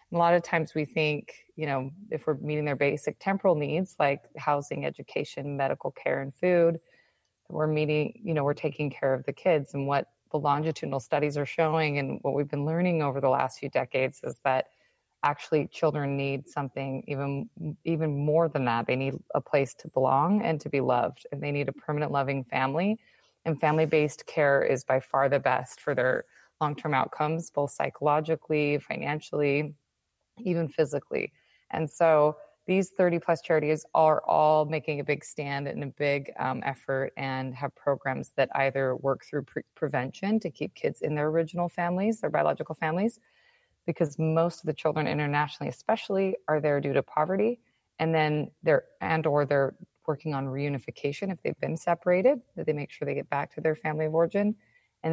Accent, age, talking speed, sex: American, 20-39, 180 wpm, female